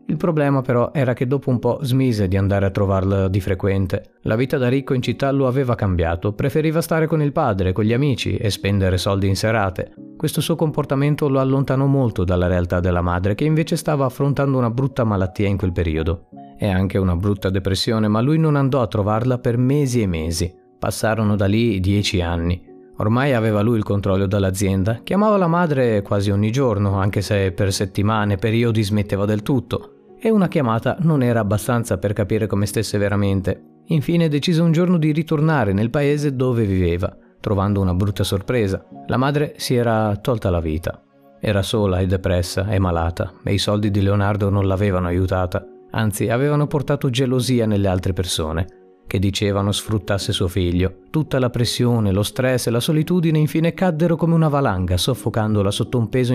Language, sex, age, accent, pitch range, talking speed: Italian, male, 30-49, native, 95-135 Hz, 185 wpm